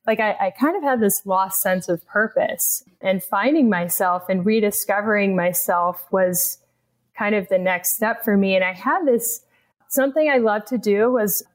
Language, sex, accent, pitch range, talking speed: English, female, American, 195-245 Hz, 180 wpm